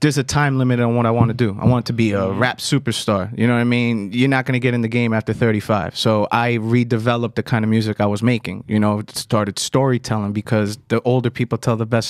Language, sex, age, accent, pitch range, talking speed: English, male, 30-49, American, 115-150 Hz, 260 wpm